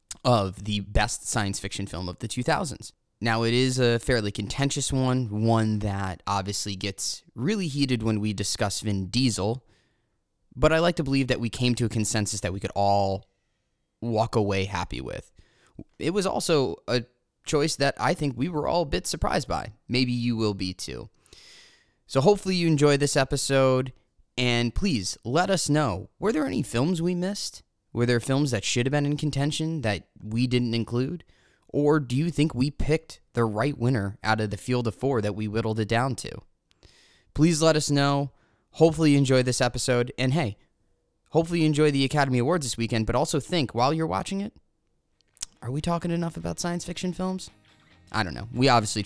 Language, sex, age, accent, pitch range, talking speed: English, male, 20-39, American, 105-145 Hz, 190 wpm